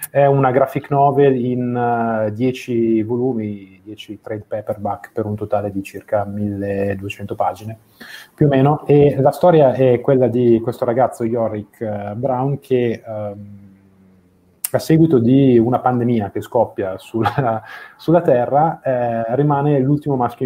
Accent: native